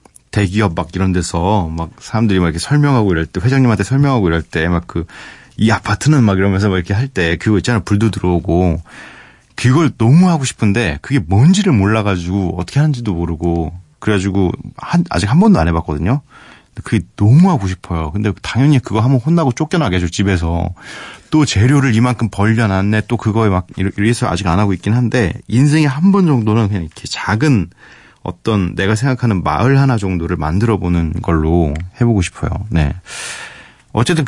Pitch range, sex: 90-125 Hz, male